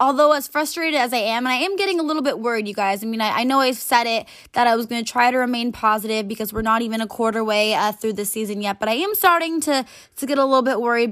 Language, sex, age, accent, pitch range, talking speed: English, female, 20-39, American, 225-275 Hz, 300 wpm